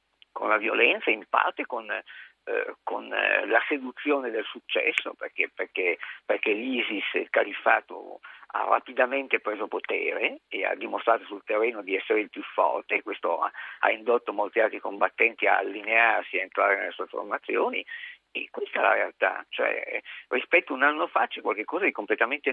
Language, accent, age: Italian, native, 50-69